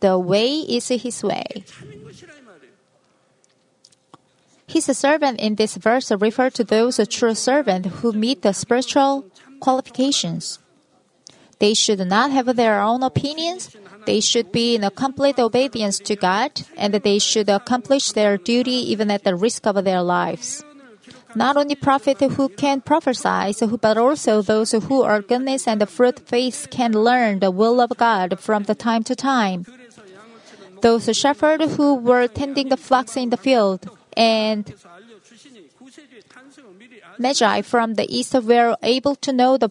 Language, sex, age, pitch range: Korean, female, 30-49, 215-260 Hz